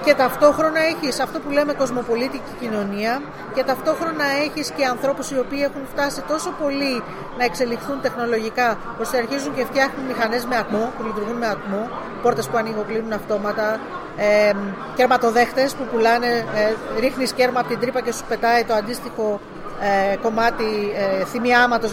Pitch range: 220-280 Hz